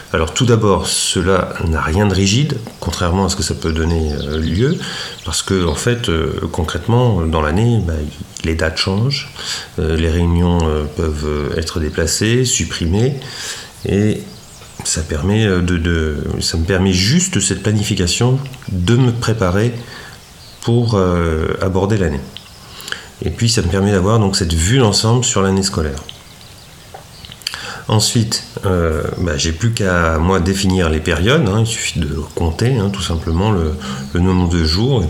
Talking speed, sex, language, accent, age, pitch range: 150 wpm, male, French, French, 40-59, 80-105 Hz